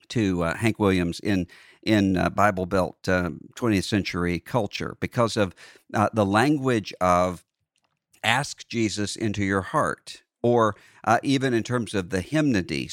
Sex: male